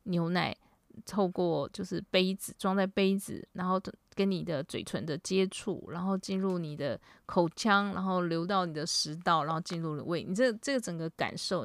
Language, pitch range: Chinese, 175-215 Hz